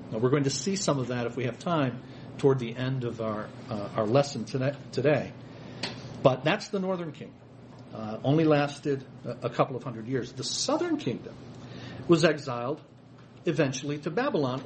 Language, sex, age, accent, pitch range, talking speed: English, male, 50-69, American, 125-160 Hz, 170 wpm